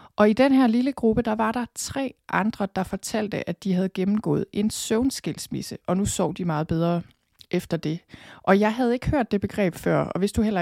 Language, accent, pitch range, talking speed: Danish, native, 175-215 Hz, 220 wpm